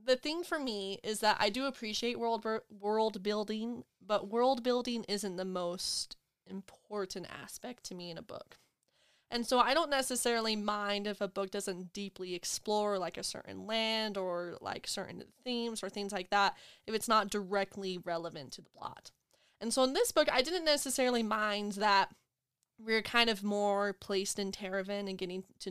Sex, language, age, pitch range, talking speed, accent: female, English, 20-39, 195-235 Hz, 180 wpm, American